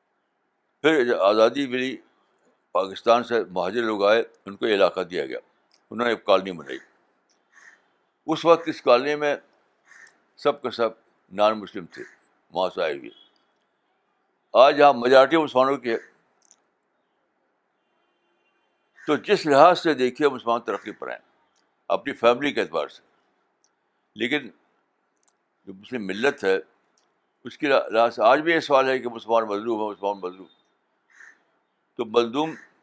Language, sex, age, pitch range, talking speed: Urdu, male, 60-79, 105-150 Hz, 135 wpm